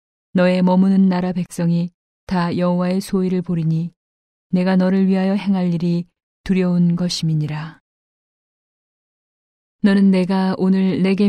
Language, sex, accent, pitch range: Korean, female, native, 170-185 Hz